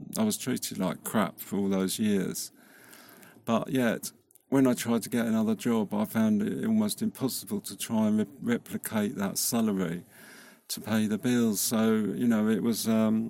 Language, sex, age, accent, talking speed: English, male, 50-69, British, 180 wpm